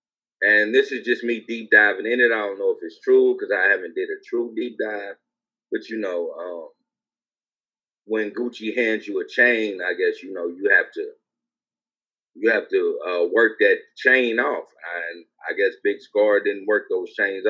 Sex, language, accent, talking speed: male, English, American, 200 wpm